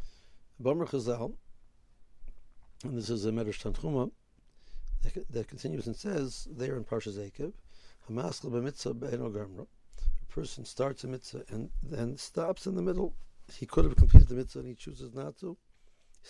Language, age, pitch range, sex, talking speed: English, 60-79, 110-140 Hz, male, 145 wpm